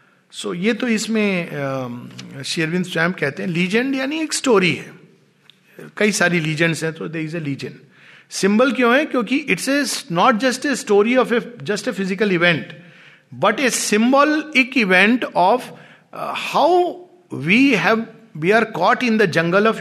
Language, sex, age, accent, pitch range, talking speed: Hindi, male, 50-69, native, 160-220 Hz, 160 wpm